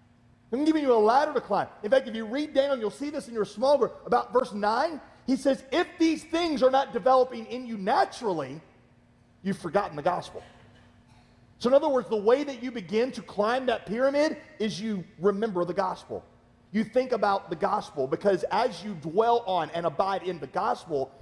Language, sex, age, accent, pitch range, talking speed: English, male, 40-59, American, 140-215 Hz, 200 wpm